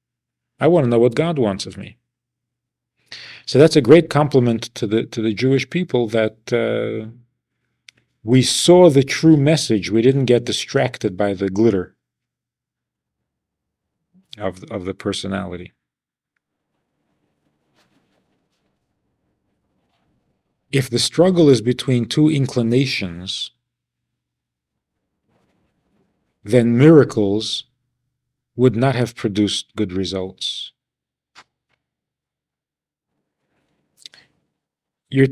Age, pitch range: 50-69, 110-140 Hz